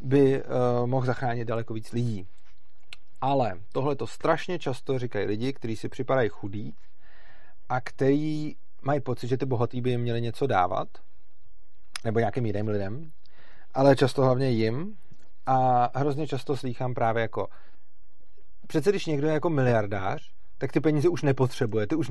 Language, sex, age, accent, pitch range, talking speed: Czech, male, 30-49, native, 115-140 Hz, 155 wpm